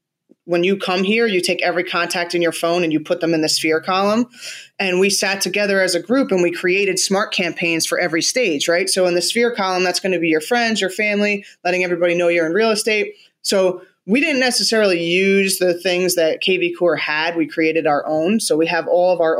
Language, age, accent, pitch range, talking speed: English, 20-39, American, 165-195 Hz, 235 wpm